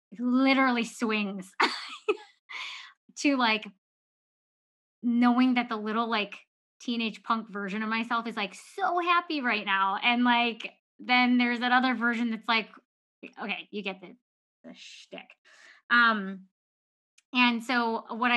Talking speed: 125 wpm